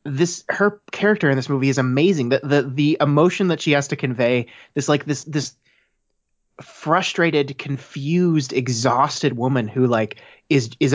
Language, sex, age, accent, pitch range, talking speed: English, male, 30-49, American, 120-150 Hz, 160 wpm